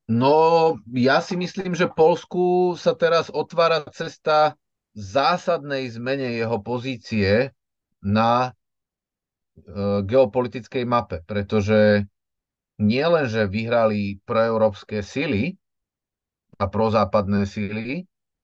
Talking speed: 85 wpm